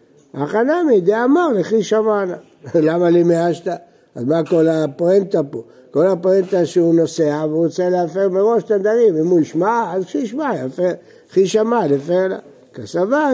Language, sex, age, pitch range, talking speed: Hebrew, male, 60-79, 170-225 Hz, 135 wpm